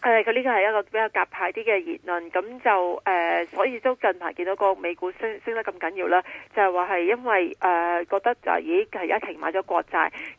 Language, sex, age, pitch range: Chinese, female, 30-49, 175-235 Hz